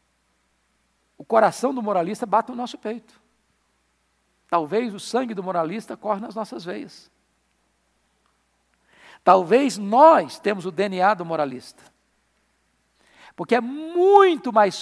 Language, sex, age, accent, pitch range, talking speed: Portuguese, male, 60-79, Brazilian, 195-265 Hz, 110 wpm